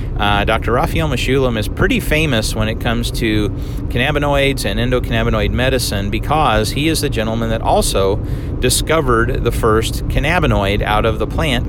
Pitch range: 105-125 Hz